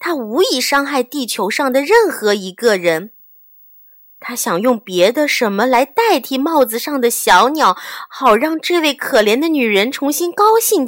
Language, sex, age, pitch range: Chinese, female, 20-39, 225-345 Hz